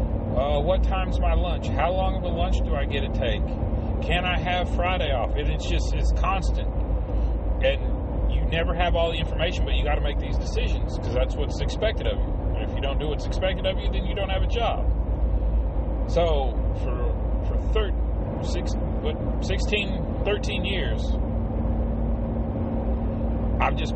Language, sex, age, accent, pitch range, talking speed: English, male, 30-49, American, 75-95 Hz, 175 wpm